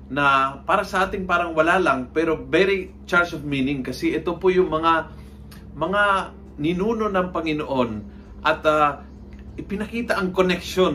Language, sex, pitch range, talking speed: Filipino, male, 120-175 Hz, 140 wpm